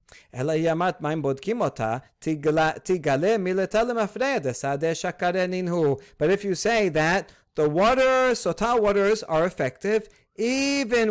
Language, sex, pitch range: English, male, 150-195 Hz